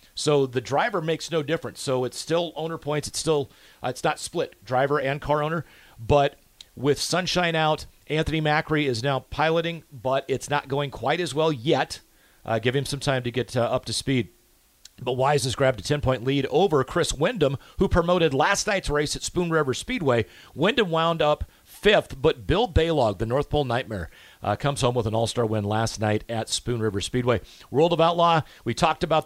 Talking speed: 205 wpm